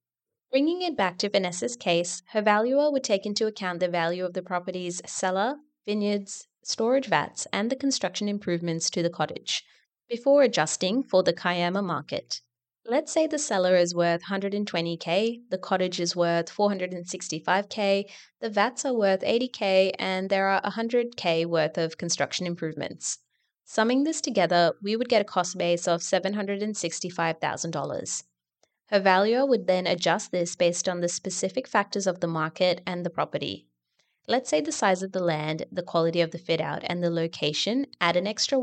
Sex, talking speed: female, 165 wpm